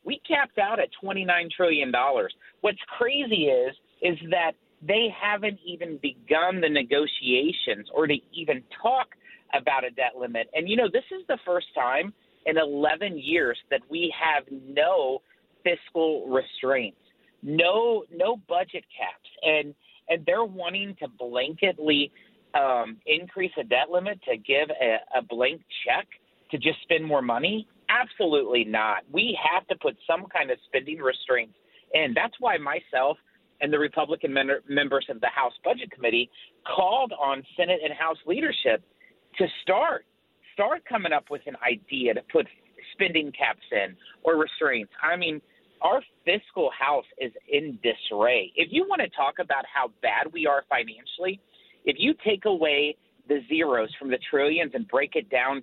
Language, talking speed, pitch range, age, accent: English, 155 wpm, 145-230 Hz, 40-59, American